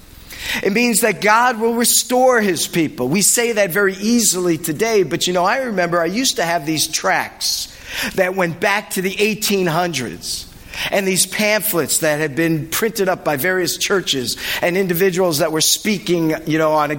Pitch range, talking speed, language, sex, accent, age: 160-200 Hz, 180 wpm, English, male, American, 50-69